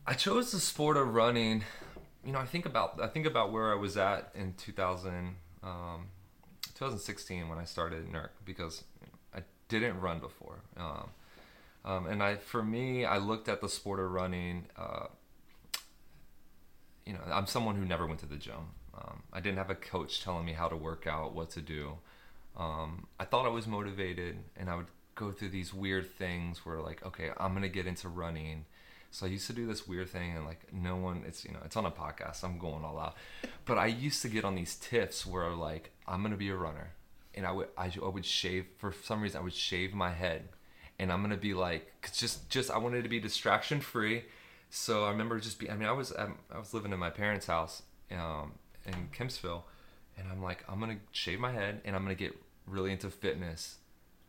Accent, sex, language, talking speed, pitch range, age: American, male, English, 220 wpm, 85-105 Hz, 30-49